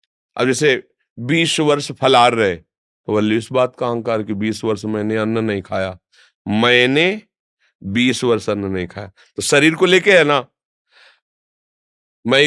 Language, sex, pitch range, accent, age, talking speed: Hindi, male, 105-135 Hz, native, 40-59, 155 wpm